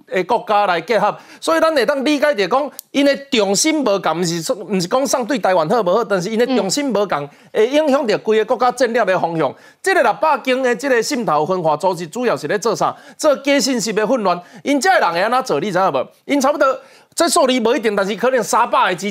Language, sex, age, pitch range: Chinese, male, 30-49, 220-295 Hz